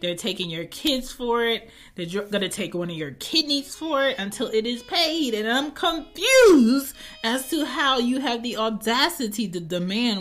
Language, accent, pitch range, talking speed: English, American, 165-230 Hz, 190 wpm